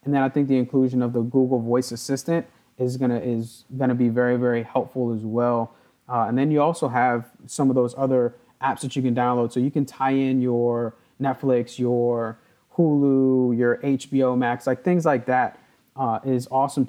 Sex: male